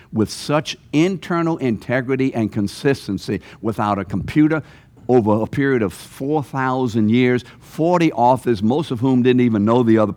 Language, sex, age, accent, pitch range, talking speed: English, male, 60-79, American, 100-125 Hz, 150 wpm